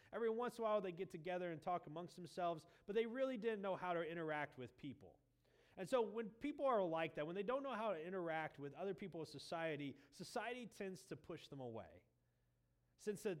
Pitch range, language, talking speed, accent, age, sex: 150-210 Hz, English, 215 wpm, American, 30-49, male